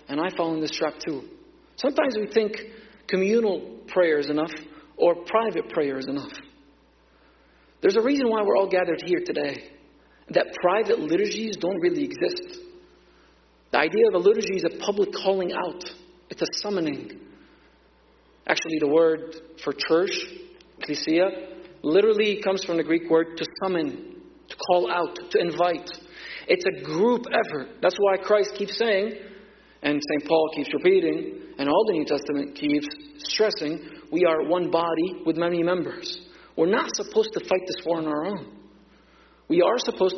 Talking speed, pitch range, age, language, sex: 160 wpm, 155-215 Hz, 40-59, English, male